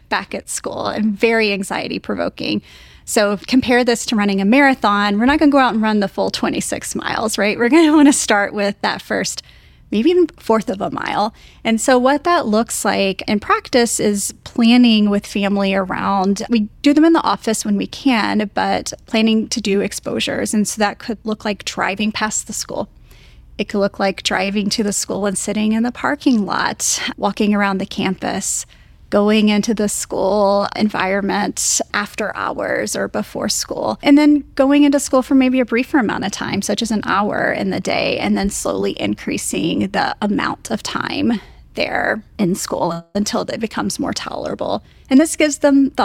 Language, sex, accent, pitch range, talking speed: English, female, American, 205-255 Hz, 195 wpm